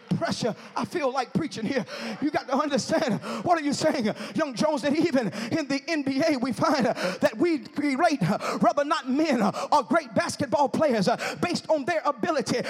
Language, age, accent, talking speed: English, 40-59, American, 190 wpm